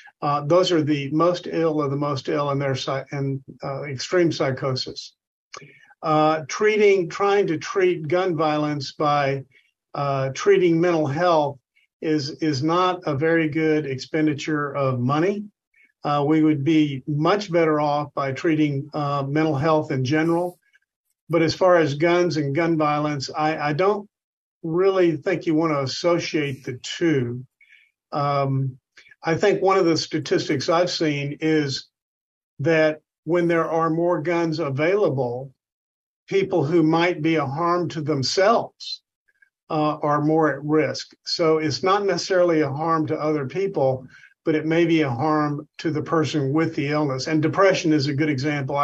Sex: male